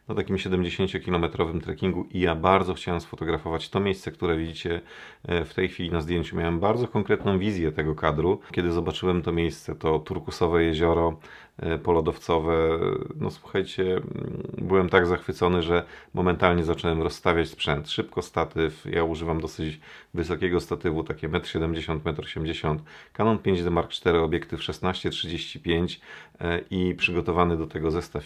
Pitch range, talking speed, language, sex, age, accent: 85-95 Hz, 140 wpm, Polish, male, 40-59, native